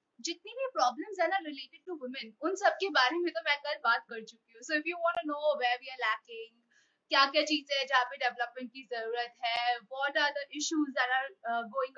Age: 20-39